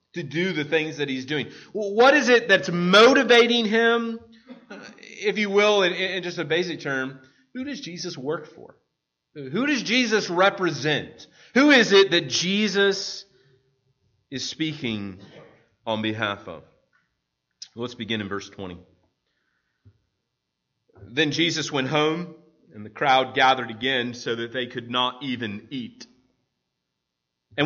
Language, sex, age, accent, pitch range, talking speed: English, male, 30-49, American, 115-190 Hz, 135 wpm